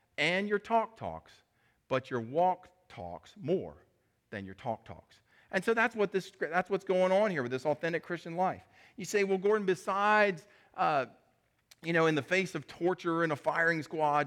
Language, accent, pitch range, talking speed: English, American, 125-180 Hz, 190 wpm